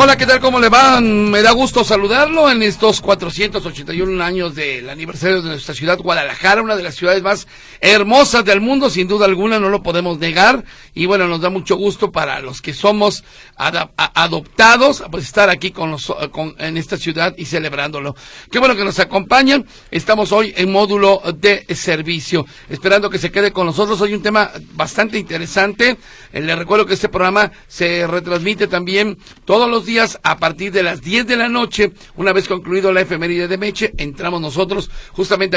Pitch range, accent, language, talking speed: 170-210 Hz, Mexican, Spanish, 185 wpm